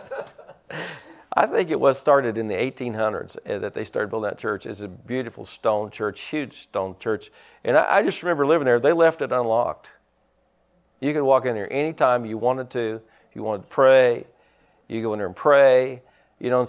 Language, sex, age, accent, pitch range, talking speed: English, male, 50-69, American, 115-150 Hz, 205 wpm